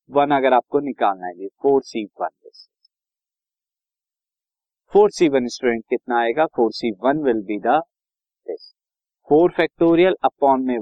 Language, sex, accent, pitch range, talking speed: Hindi, male, native, 120-180 Hz, 130 wpm